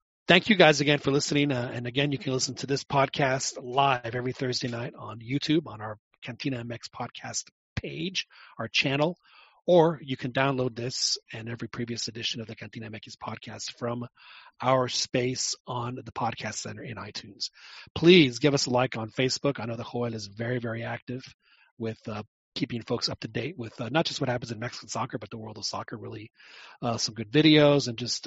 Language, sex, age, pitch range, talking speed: English, male, 30-49, 115-140 Hz, 200 wpm